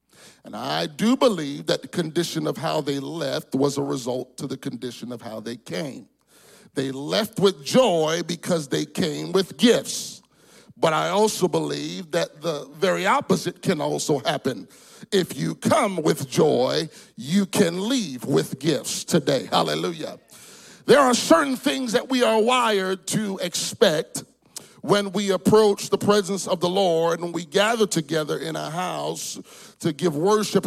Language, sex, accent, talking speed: English, male, American, 160 wpm